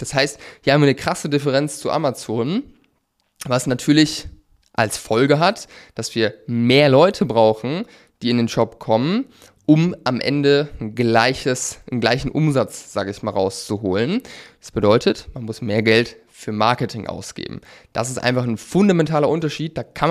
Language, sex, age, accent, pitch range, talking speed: German, male, 20-39, German, 115-145 Hz, 160 wpm